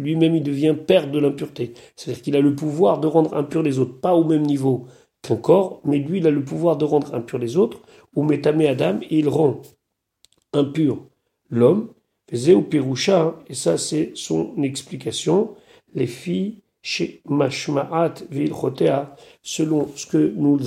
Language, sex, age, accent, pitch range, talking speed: French, male, 40-59, French, 135-160 Hz, 160 wpm